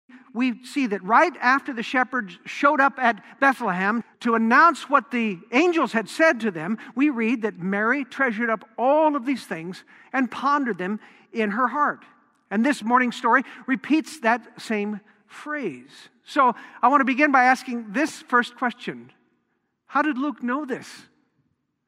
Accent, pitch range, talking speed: American, 220-280 Hz, 160 wpm